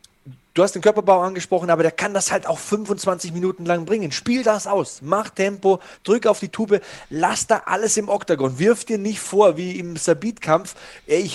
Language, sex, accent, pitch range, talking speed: German, male, German, 135-180 Hz, 195 wpm